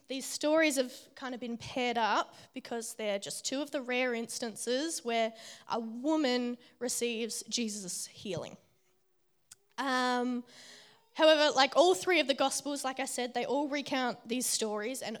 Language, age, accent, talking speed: English, 10-29, Australian, 155 wpm